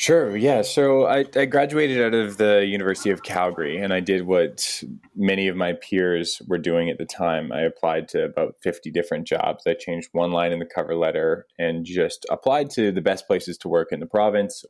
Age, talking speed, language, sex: 20-39, 210 wpm, English, male